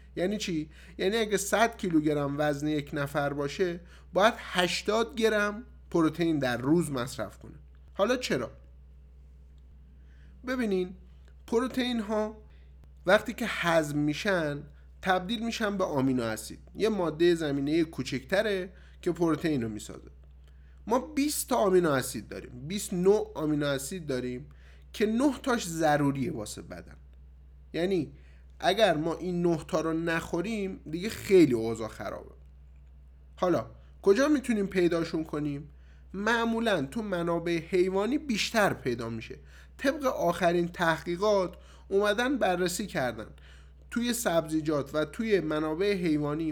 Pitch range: 125-205 Hz